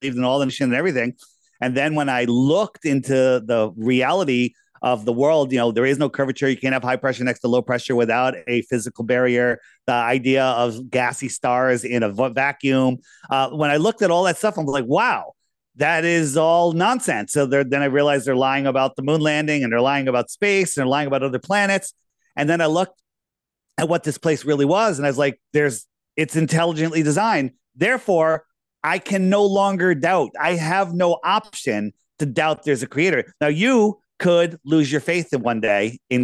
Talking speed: 205 wpm